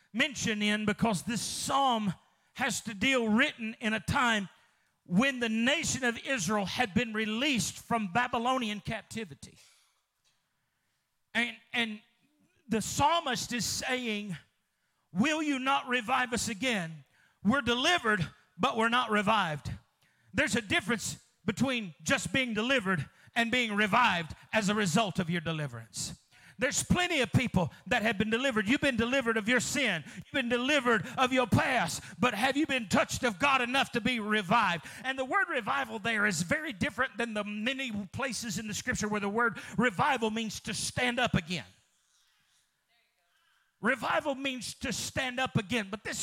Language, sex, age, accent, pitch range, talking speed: English, male, 40-59, American, 210-255 Hz, 155 wpm